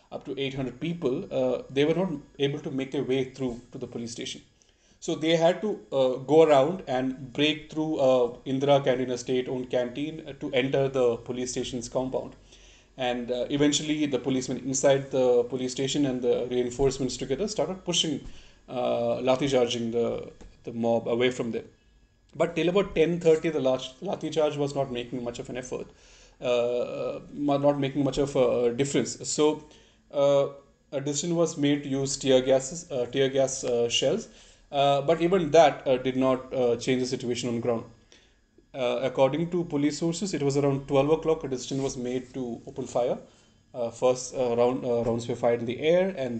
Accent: Indian